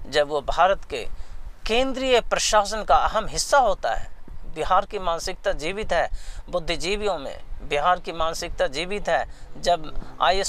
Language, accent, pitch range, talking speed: Hindi, native, 135-185 Hz, 145 wpm